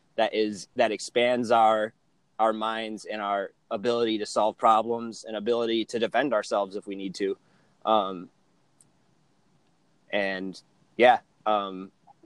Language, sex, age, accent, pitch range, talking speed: English, male, 30-49, American, 105-125 Hz, 125 wpm